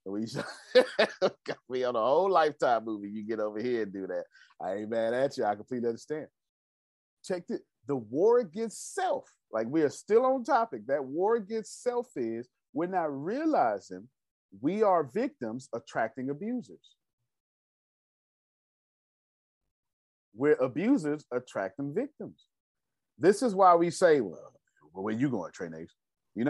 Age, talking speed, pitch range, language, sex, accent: 30-49, 140 wpm, 105-170 Hz, English, male, American